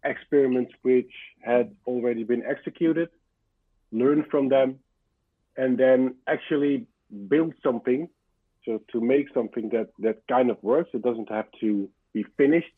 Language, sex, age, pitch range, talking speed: English, male, 50-69, 115-135 Hz, 135 wpm